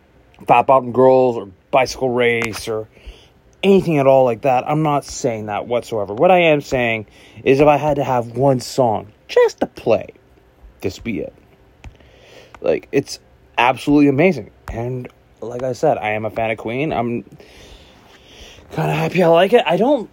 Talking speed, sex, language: 175 wpm, male, English